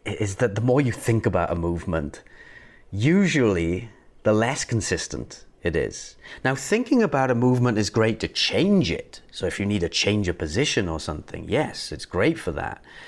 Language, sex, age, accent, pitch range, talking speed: English, male, 30-49, British, 90-120 Hz, 185 wpm